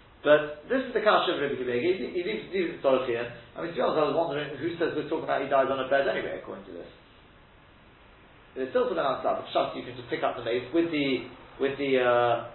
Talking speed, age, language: 245 wpm, 40-59, English